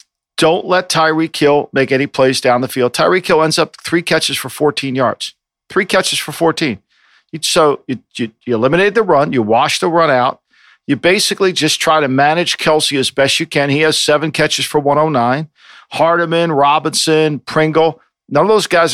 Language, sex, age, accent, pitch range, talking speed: English, male, 50-69, American, 135-160 Hz, 185 wpm